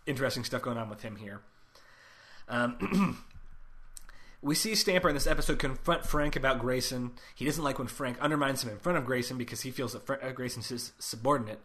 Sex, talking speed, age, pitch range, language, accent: male, 190 wpm, 20-39, 120-150 Hz, English, American